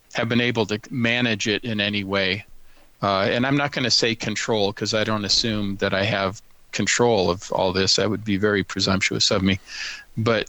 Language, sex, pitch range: English, male, 95-115 Hz